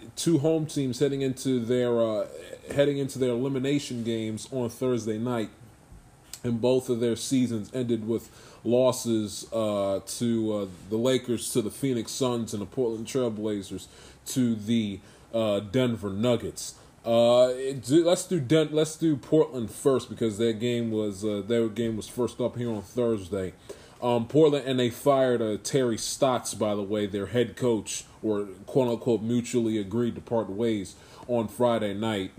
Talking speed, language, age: 165 wpm, English, 20-39